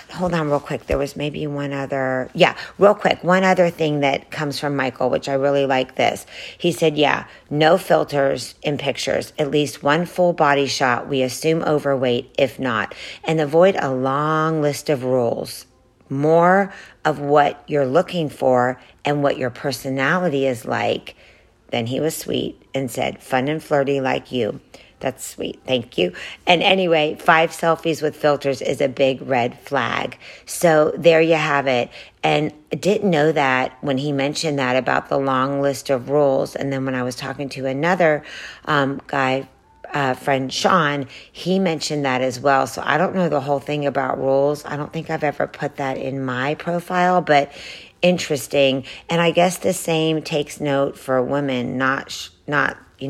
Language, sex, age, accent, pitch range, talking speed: English, female, 50-69, American, 135-160 Hz, 180 wpm